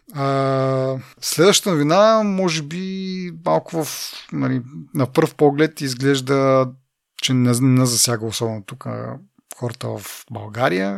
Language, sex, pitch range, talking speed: Bulgarian, male, 120-140 Hz, 115 wpm